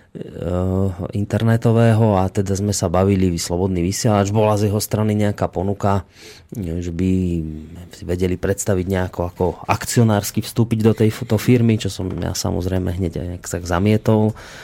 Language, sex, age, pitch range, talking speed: Slovak, male, 30-49, 95-115 Hz, 135 wpm